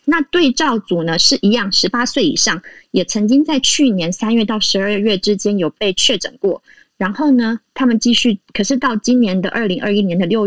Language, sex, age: Chinese, female, 20-39